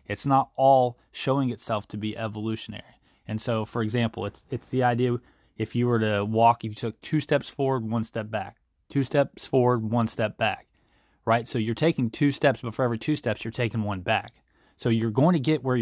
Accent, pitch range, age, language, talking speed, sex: American, 110-130 Hz, 20-39, English, 215 wpm, male